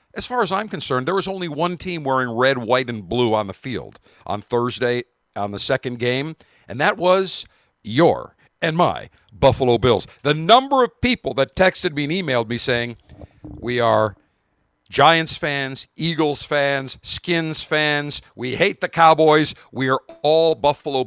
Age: 50-69